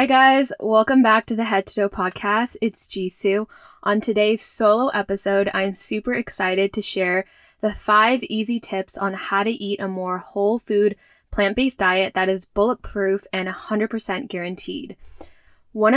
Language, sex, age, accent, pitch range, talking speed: English, female, 10-29, American, 195-230 Hz, 160 wpm